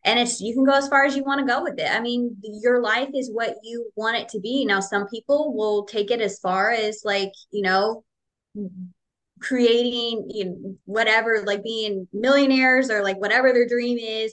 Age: 20-39